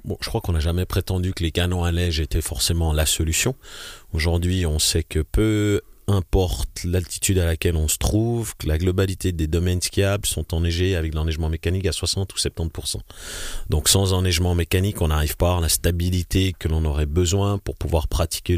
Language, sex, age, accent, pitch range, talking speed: French, male, 30-49, French, 85-95 Hz, 195 wpm